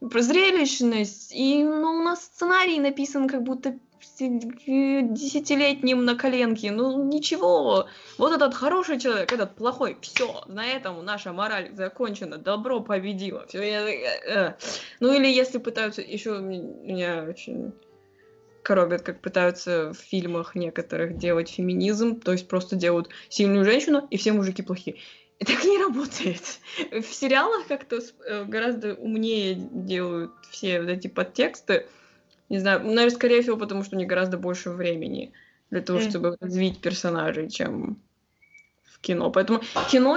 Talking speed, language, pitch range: 135 wpm, Russian, 190-260 Hz